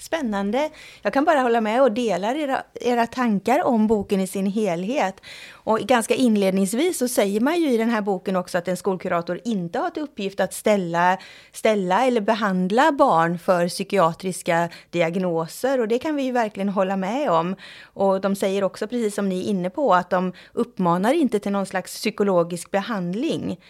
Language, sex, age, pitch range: Swedish, female, 30-49, 180-230 Hz